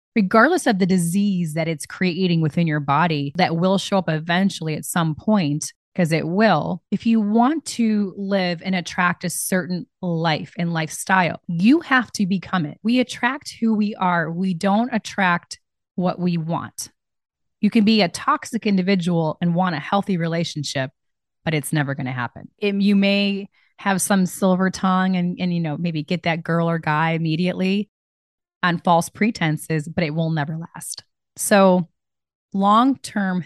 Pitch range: 160-200 Hz